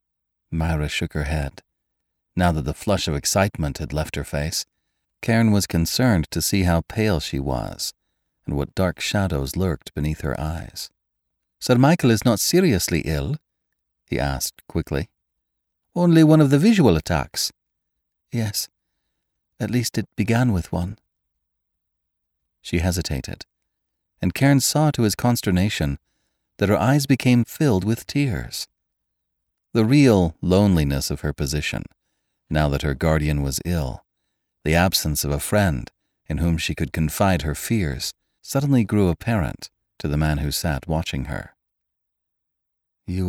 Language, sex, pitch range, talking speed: English, male, 75-105 Hz, 145 wpm